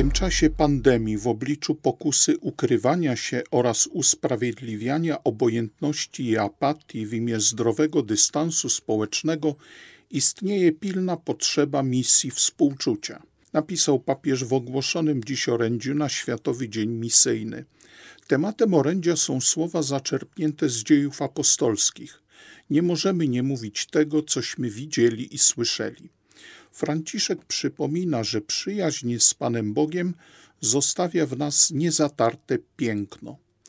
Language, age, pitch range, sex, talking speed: Polish, 50-69, 120-160 Hz, male, 110 wpm